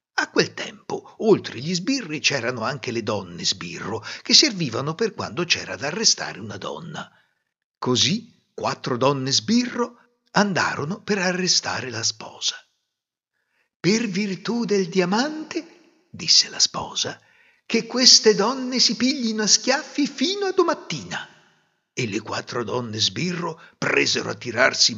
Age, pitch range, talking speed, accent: 60-79, 140-230 Hz, 125 wpm, native